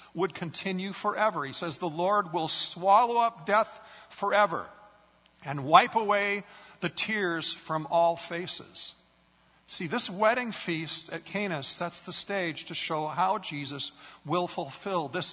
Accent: American